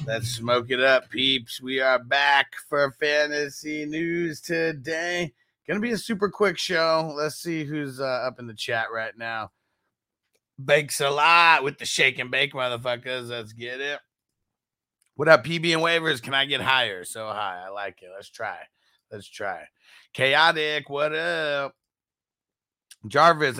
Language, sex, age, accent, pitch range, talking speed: English, male, 30-49, American, 125-160 Hz, 160 wpm